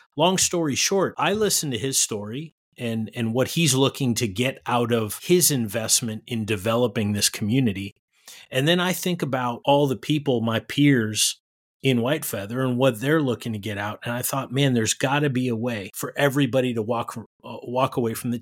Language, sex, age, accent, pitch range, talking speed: English, male, 30-49, American, 115-140 Hz, 200 wpm